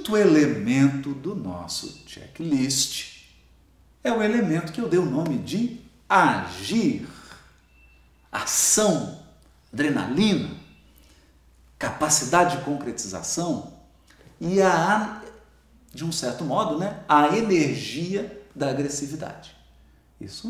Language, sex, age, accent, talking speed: Portuguese, male, 50-69, Brazilian, 90 wpm